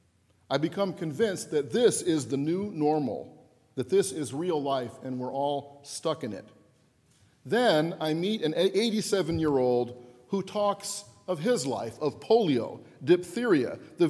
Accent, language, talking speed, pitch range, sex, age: American, English, 145 wpm, 140-185 Hz, male, 50-69